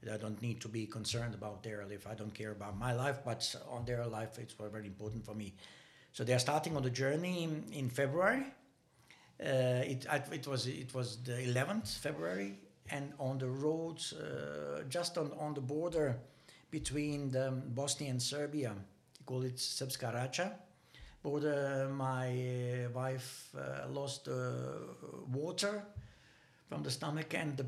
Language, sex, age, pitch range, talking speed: English, male, 60-79, 115-145 Hz, 155 wpm